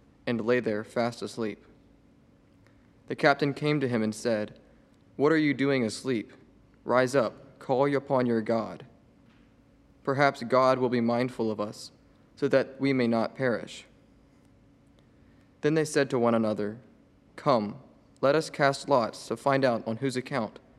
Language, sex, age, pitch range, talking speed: English, male, 20-39, 110-135 Hz, 155 wpm